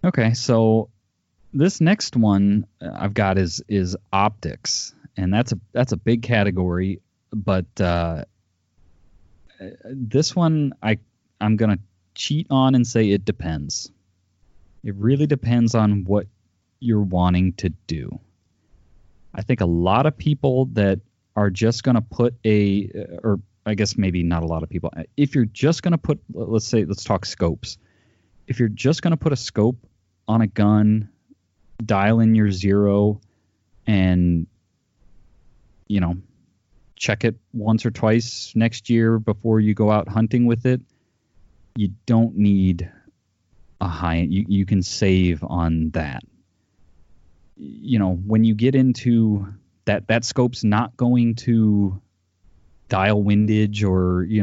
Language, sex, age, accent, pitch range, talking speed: English, male, 30-49, American, 95-115 Hz, 140 wpm